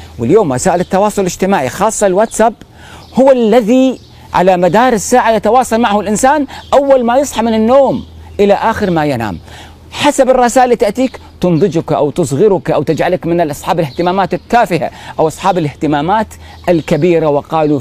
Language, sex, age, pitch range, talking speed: Arabic, male, 40-59, 135-215 Hz, 135 wpm